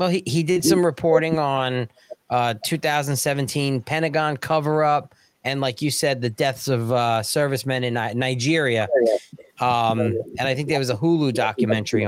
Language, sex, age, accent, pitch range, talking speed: English, male, 30-49, American, 120-155 Hz, 165 wpm